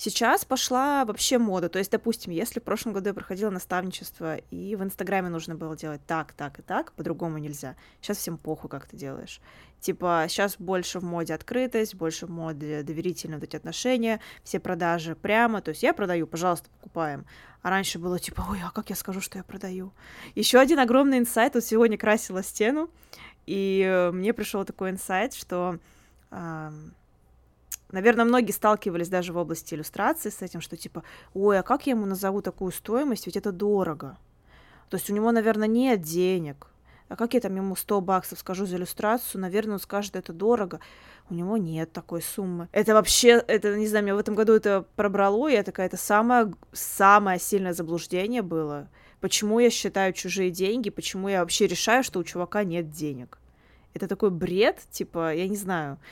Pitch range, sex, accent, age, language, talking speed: 170-215 Hz, female, native, 20-39, Russian, 180 wpm